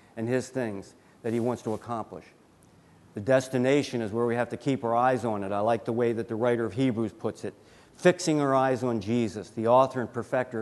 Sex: male